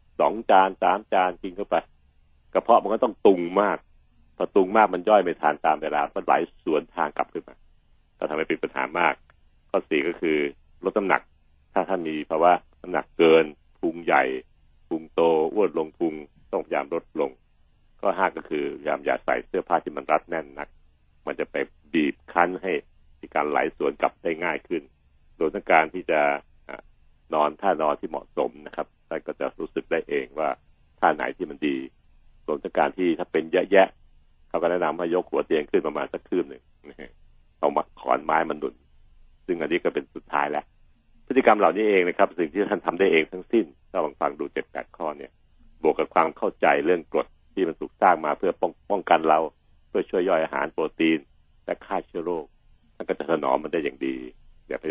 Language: Thai